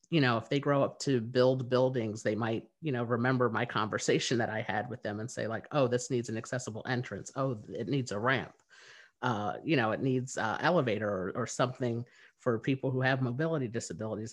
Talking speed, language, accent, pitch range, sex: 215 wpm, English, American, 115-135 Hz, male